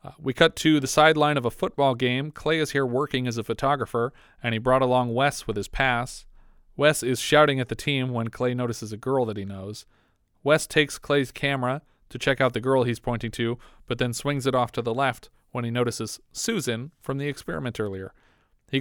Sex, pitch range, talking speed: male, 115-140 Hz, 215 wpm